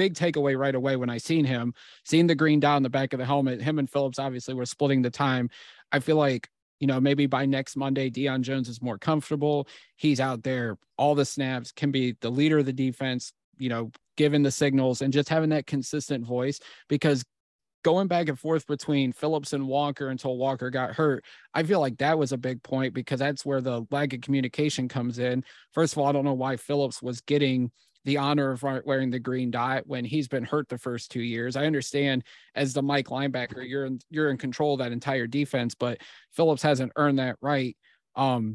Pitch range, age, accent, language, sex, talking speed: 130-145 Hz, 30-49, American, English, male, 220 wpm